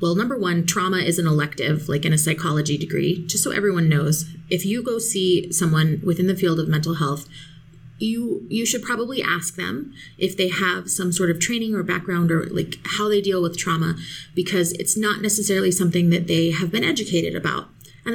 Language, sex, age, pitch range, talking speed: English, female, 30-49, 160-205 Hz, 200 wpm